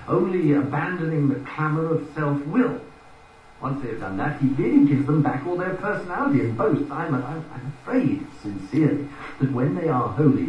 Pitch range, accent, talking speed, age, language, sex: 125-160 Hz, British, 170 wpm, 50-69, English, male